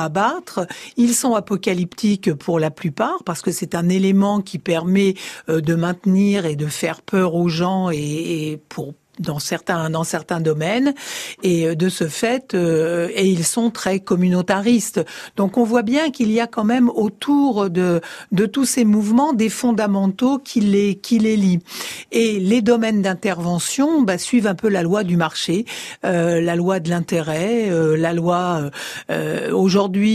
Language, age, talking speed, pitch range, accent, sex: French, 60-79, 165 wpm, 170-210 Hz, French, female